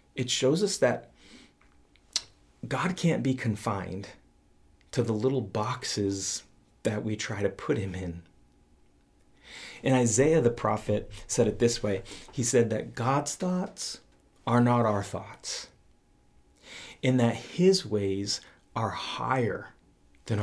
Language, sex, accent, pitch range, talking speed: English, male, American, 95-125 Hz, 125 wpm